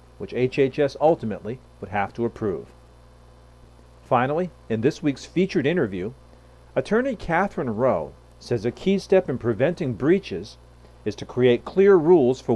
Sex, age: male, 40-59